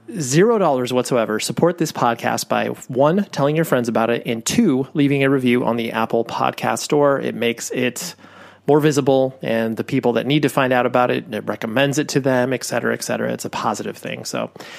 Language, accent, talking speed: English, American, 210 wpm